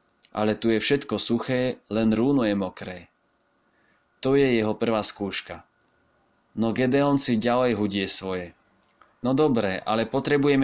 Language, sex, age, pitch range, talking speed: Slovak, male, 20-39, 105-120 Hz, 135 wpm